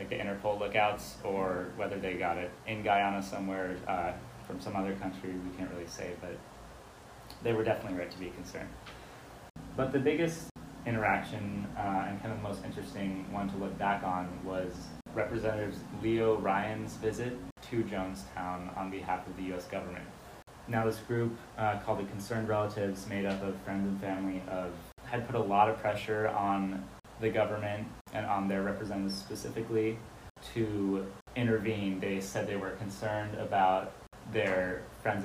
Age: 20-39